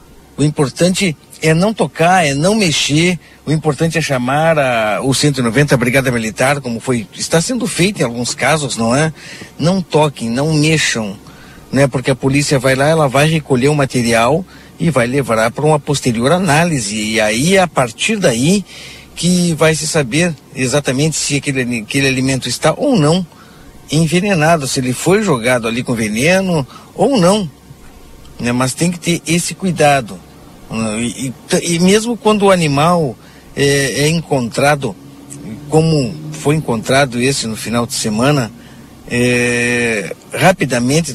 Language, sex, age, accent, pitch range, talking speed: Portuguese, male, 50-69, Brazilian, 125-160 Hz, 150 wpm